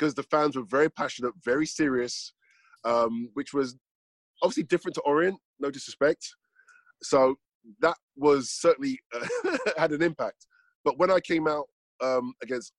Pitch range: 120-155 Hz